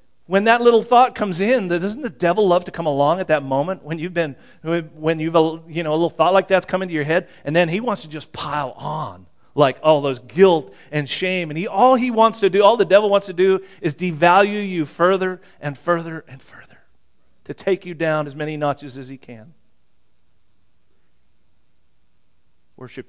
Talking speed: 210 wpm